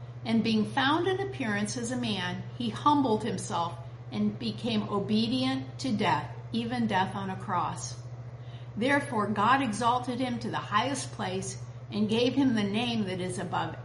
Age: 50-69